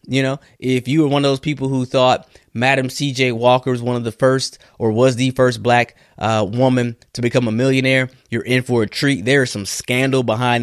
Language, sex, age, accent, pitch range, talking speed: English, male, 20-39, American, 105-130 Hz, 225 wpm